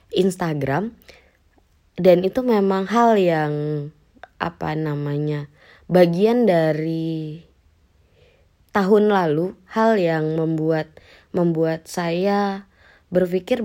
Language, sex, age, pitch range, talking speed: Indonesian, female, 20-39, 155-185 Hz, 80 wpm